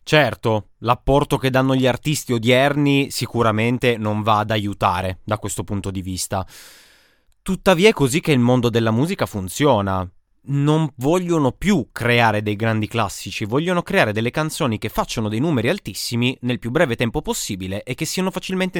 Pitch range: 105-145 Hz